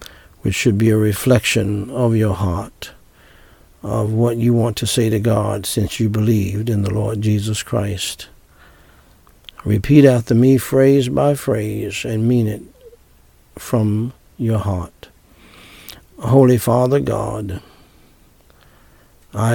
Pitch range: 100-120 Hz